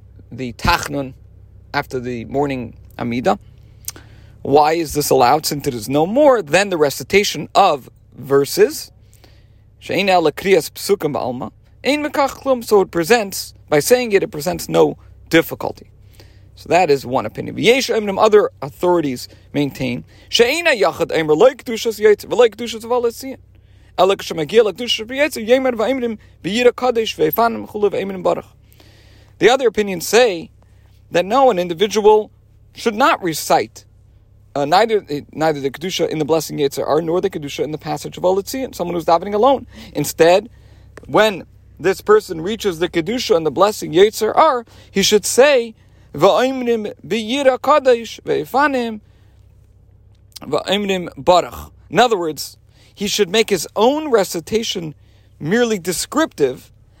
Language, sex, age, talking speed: English, male, 40-59, 105 wpm